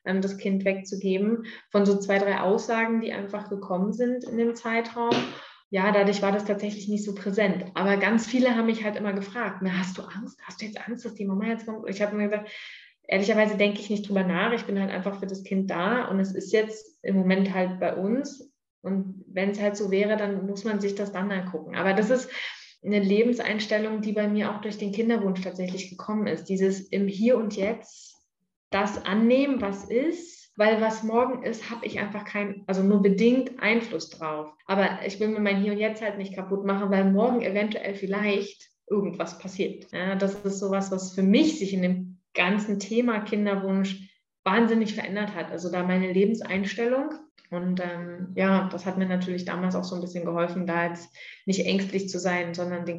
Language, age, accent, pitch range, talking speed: German, 20-39, German, 190-215 Hz, 205 wpm